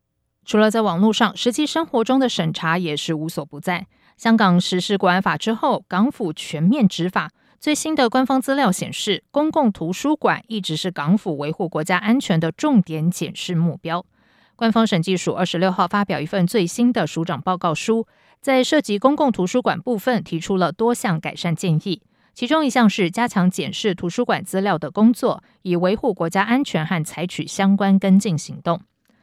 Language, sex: English, female